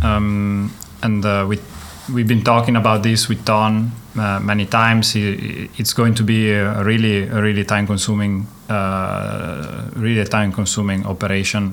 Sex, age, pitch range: male, 30-49, 100-115 Hz